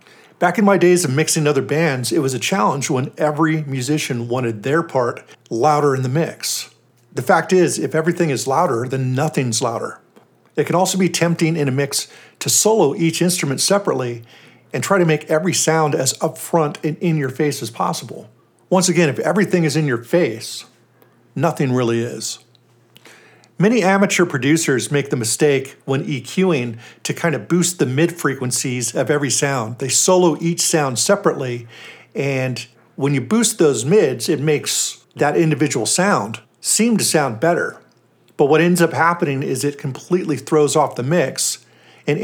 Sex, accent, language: male, American, English